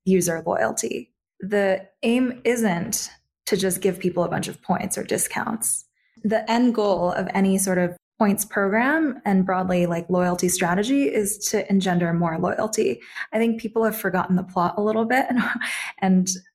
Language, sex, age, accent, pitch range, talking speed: English, female, 20-39, American, 175-210 Hz, 165 wpm